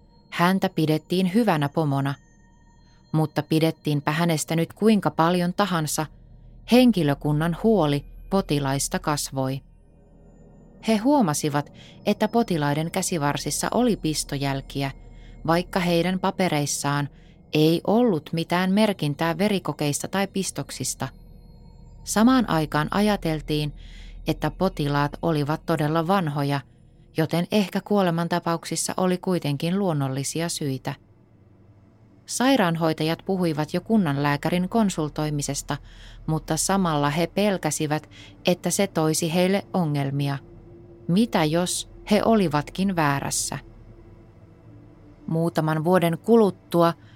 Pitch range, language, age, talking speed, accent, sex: 145-185 Hz, Finnish, 20-39, 90 wpm, native, female